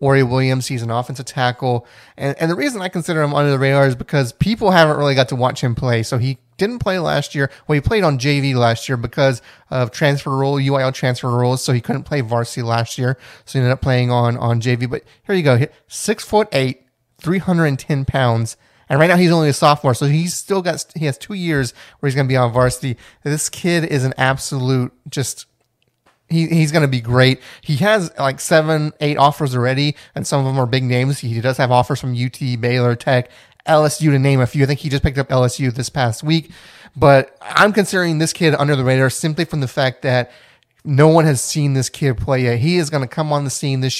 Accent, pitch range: American, 125-150 Hz